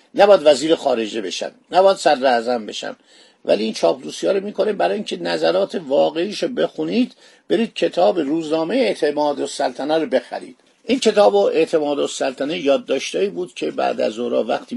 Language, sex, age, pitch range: Persian, male, 50-69, 140-215 Hz